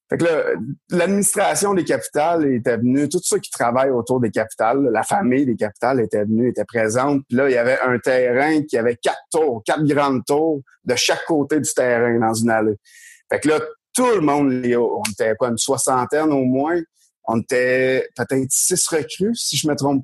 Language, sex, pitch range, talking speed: French, male, 120-150 Hz, 200 wpm